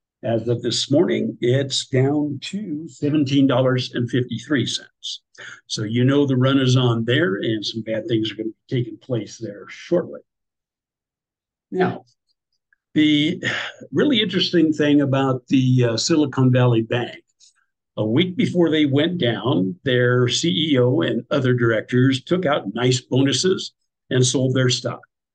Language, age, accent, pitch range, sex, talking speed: English, 60-79, American, 120-145 Hz, male, 135 wpm